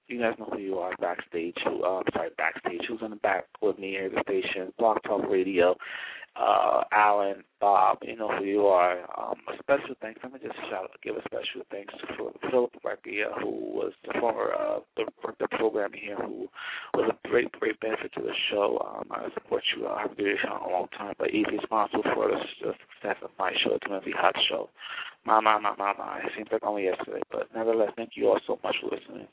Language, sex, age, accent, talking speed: English, male, 30-49, American, 225 wpm